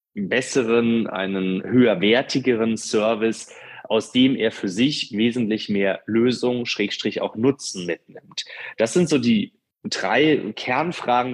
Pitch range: 105-125 Hz